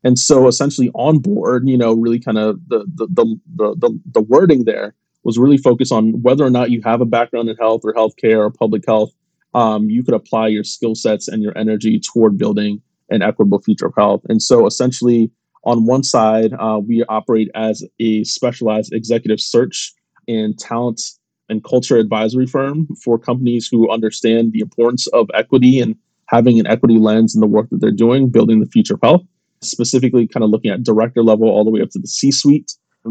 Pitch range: 110-125 Hz